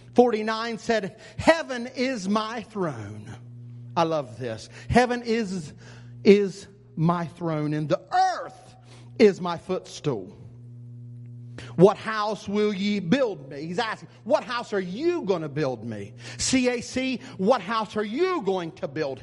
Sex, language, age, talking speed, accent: male, English, 50-69, 140 wpm, American